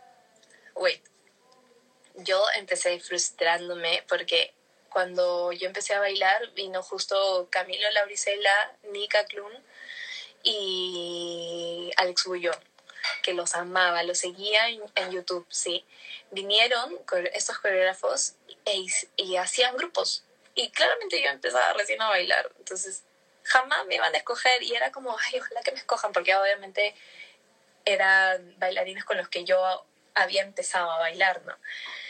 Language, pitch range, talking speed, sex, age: Spanish, 185-255 Hz, 130 wpm, female, 20-39